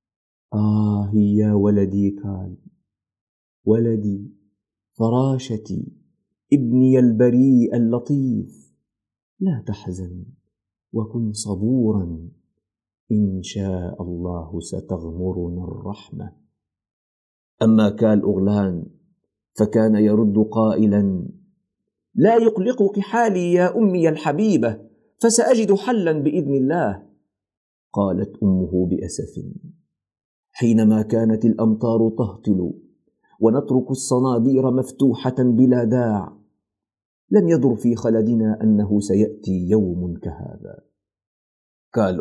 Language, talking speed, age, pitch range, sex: Arabic, 80 wpm, 50-69, 100-160 Hz, male